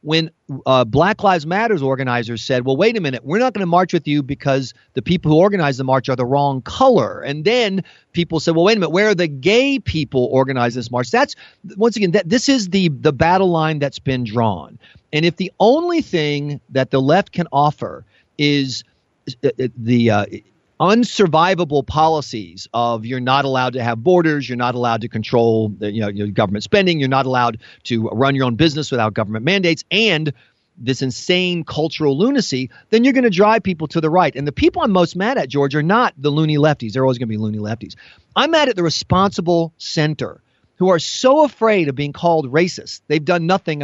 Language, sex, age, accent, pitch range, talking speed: English, male, 40-59, American, 125-180 Hz, 210 wpm